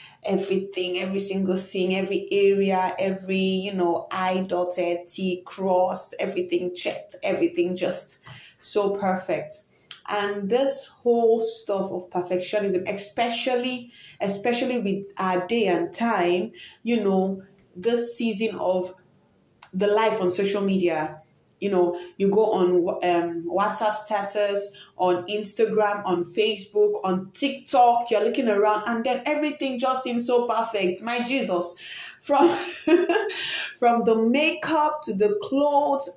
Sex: female